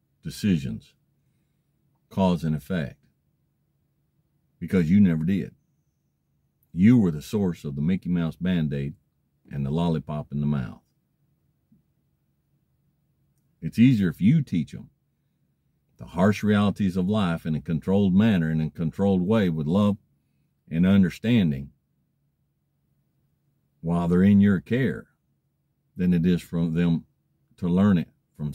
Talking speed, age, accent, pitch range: 130 wpm, 50-69, American, 75-100 Hz